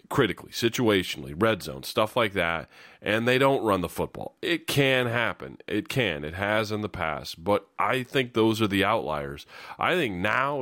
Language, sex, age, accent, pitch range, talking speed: English, male, 30-49, American, 90-120 Hz, 185 wpm